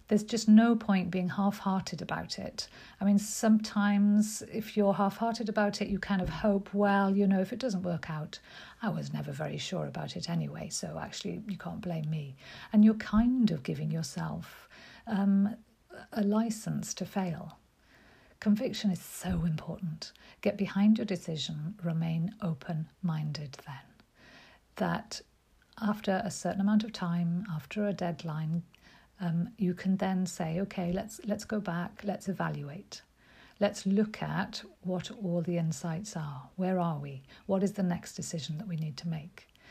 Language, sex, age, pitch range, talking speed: English, female, 50-69, 170-205 Hz, 160 wpm